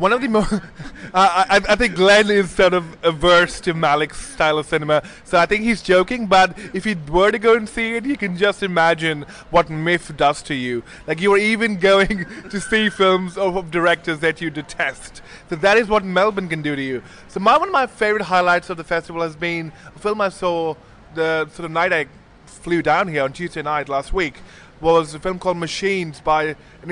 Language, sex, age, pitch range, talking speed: English, male, 20-39, 155-195 Hz, 225 wpm